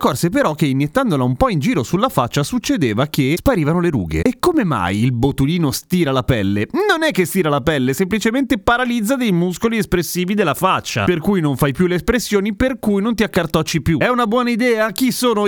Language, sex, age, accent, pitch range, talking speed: Italian, male, 30-49, native, 140-200 Hz, 215 wpm